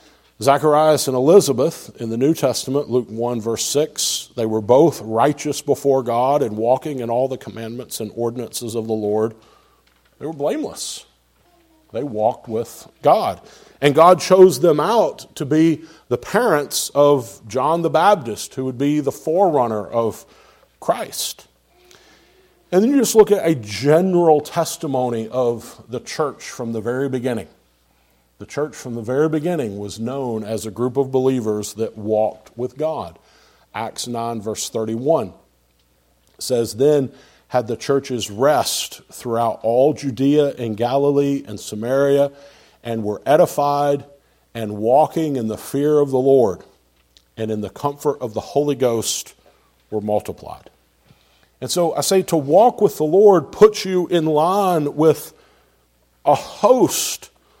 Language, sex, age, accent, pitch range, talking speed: English, male, 50-69, American, 110-150 Hz, 150 wpm